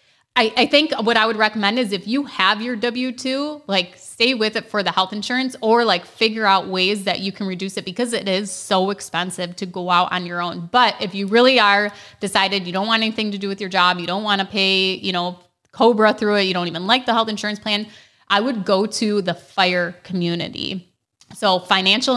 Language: English